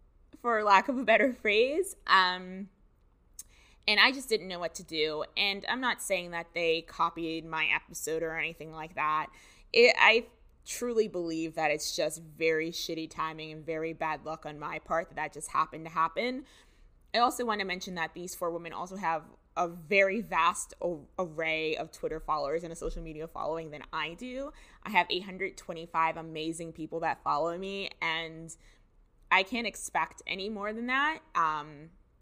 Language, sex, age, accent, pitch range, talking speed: English, female, 20-39, American, 160-190 Hz, 175 wpm